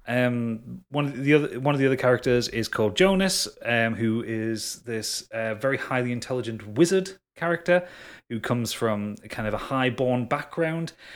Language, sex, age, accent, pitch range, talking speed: English, male, 30-49, British, 120-165 Hz, 175 wpm